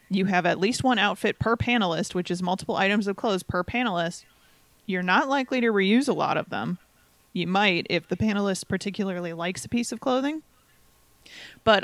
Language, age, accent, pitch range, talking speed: English, 30-49, American, 175-215 Hz, 190 wpm